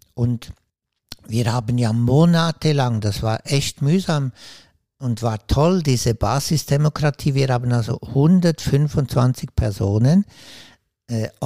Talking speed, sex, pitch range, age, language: 105 wpm, male, 115-140 Hz, 60-79, German